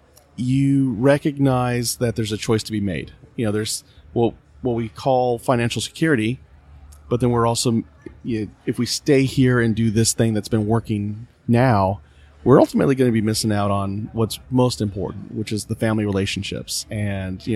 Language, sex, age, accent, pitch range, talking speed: English, male, 30-49, American, 100-120 Hz, 185 wpm